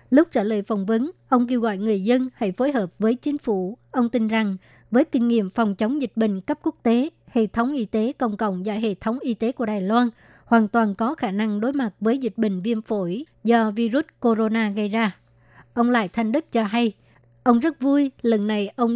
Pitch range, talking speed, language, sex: 215-245 Hz, 230 wpm, Vietnamese, male